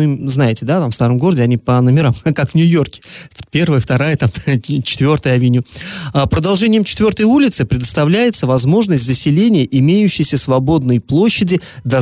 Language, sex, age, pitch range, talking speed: Russian, male, 30-49, 130-170 Hz, 140 wpm